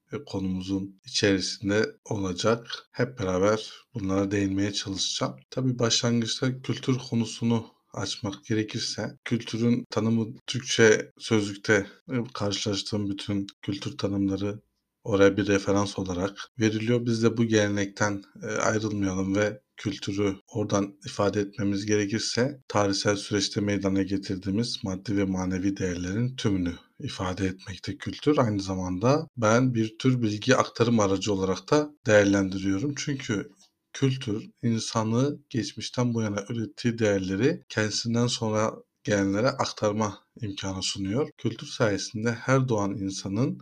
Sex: male